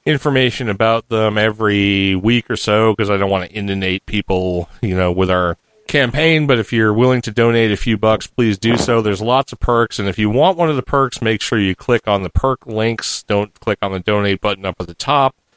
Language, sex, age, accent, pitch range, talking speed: English, male, 40-59, American, 100-125 Hz, 235 wpm